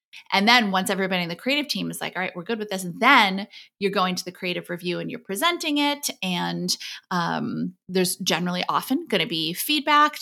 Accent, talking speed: American, 215 wpm